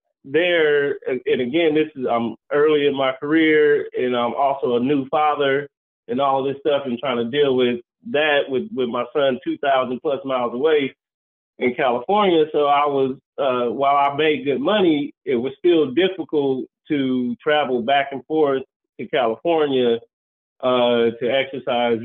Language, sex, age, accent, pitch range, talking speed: English, male, 20-39, American, 125-160 Hz, 165 wpm